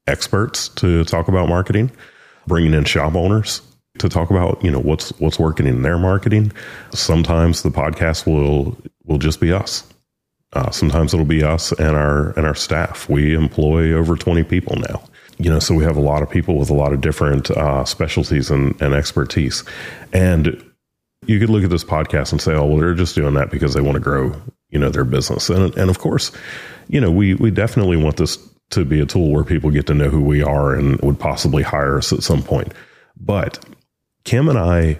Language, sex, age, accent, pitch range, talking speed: English, male, 30-49, American, 75-95 Hz, 210 wpm